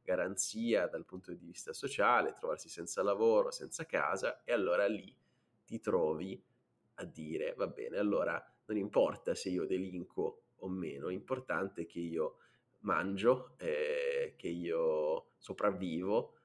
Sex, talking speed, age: male, 135 wpm, 20-39